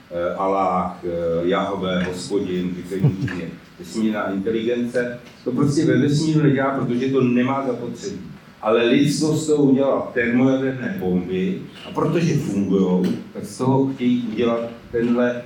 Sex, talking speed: male, 115 wpm